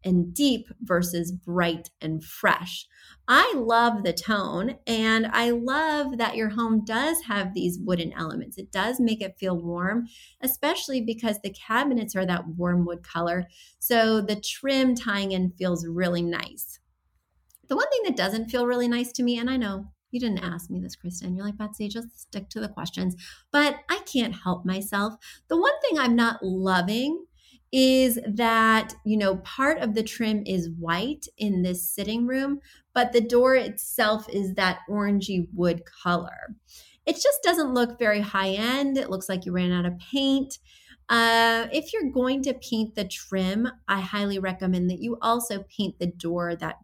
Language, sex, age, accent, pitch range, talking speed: English, female, 30-49, American, 185-245 Hz, 175 wpm